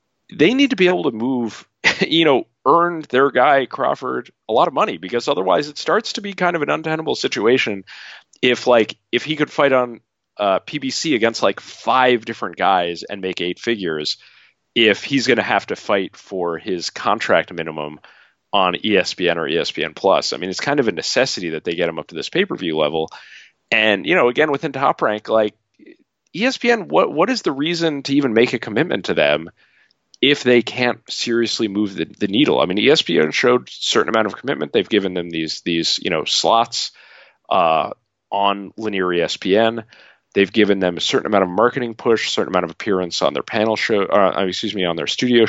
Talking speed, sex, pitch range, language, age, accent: 195 wpm, male, 95-125 Hz, English, 40-59, American